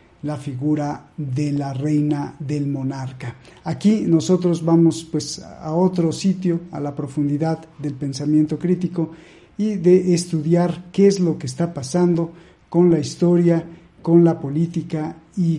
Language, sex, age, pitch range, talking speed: Spanish, male, 50-69, 150-180 Hz, 140 wpm